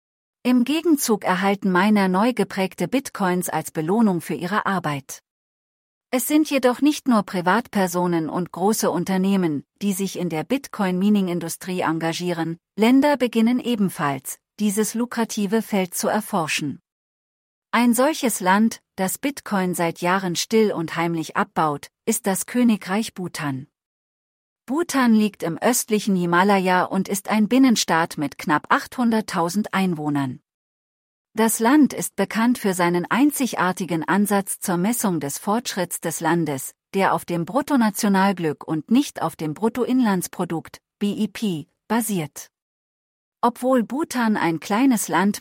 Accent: German